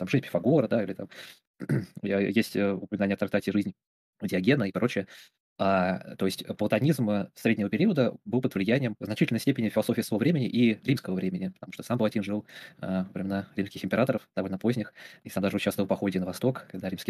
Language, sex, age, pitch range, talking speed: Russian, male, 20-39, 100-120 Hz, 185 wpm